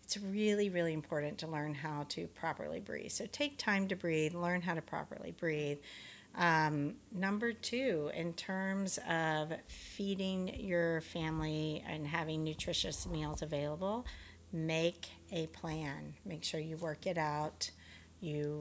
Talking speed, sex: 140 wpm, female